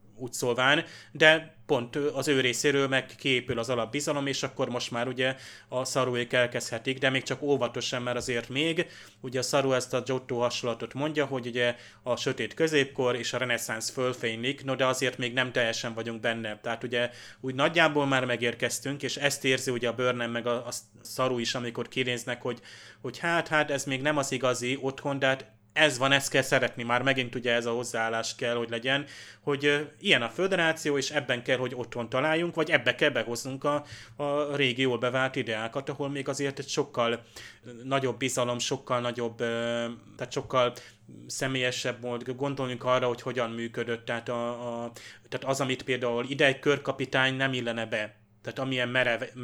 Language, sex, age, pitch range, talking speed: Hungarian, male, 30-49, 120-135 Hz, 175 wpm